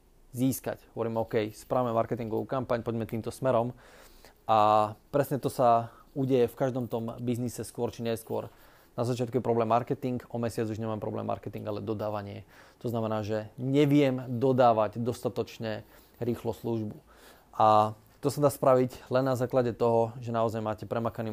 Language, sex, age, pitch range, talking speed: Slovak, male, 20-39, 110-125 Hz, 155 wpm